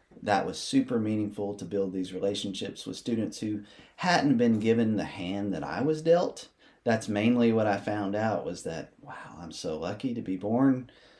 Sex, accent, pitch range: male, American, 100-140 Hz